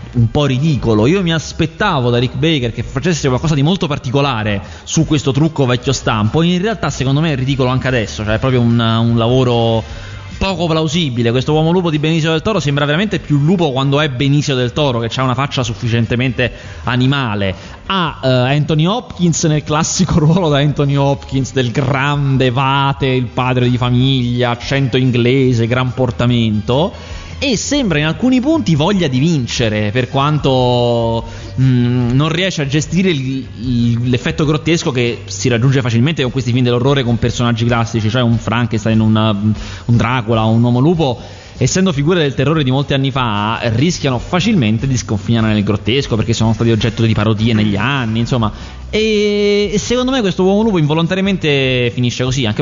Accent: native